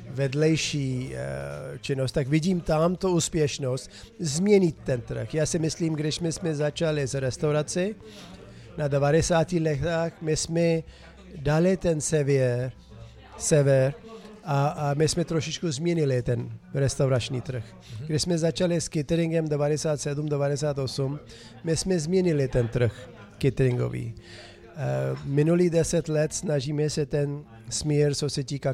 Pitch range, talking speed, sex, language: 130-160 Hz, 120 wpm, male, Czech